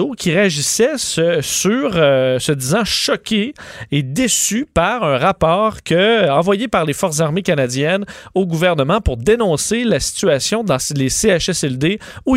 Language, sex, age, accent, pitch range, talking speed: French, male, 40-59, Canadian, 145-190 Hz, 135 wpm